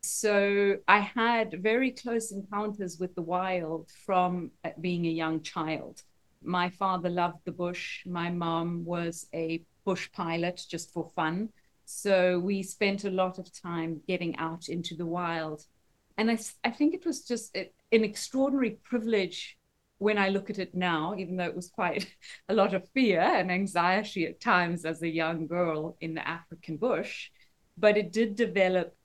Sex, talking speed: female, 165 wpm